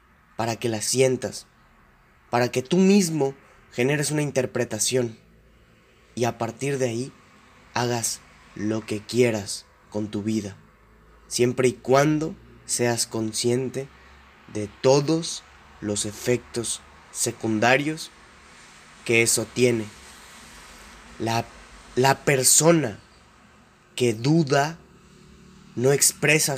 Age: 20-39